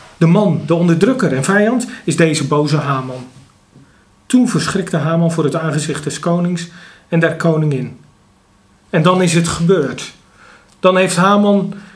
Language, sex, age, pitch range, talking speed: Dutch, male, 40-59, 160-195 Hz, 145 wpm